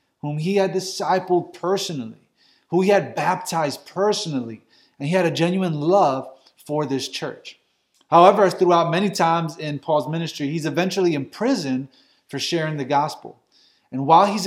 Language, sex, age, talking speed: English, male, 30-49, 150 wpm